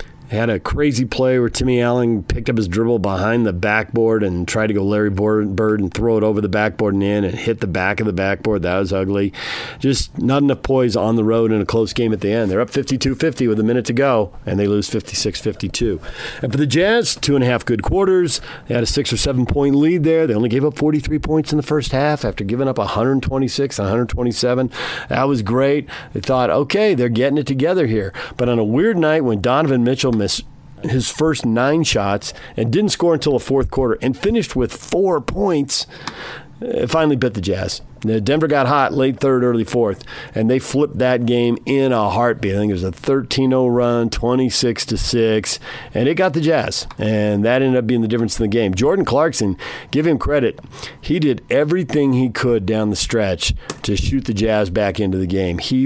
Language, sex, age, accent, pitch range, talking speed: English, male, 40-59, American, 105-135 Hz, 210 wpm